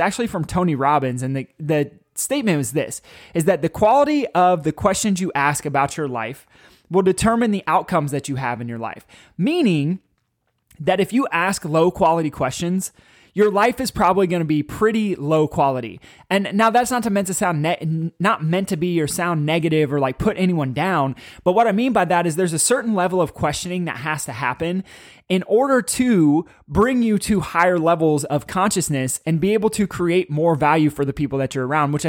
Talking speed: 200 wpm